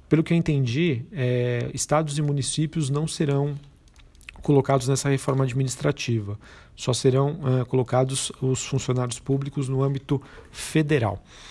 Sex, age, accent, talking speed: male, 40-59, Brazilian, 125 wpm